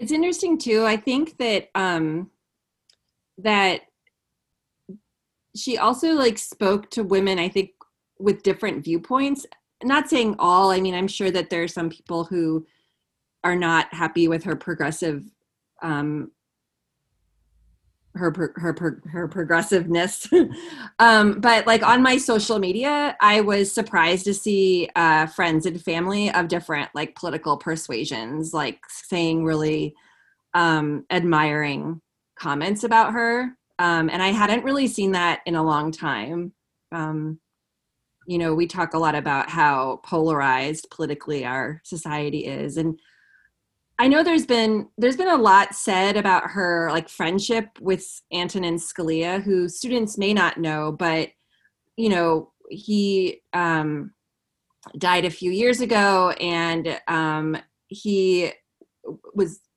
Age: 20-39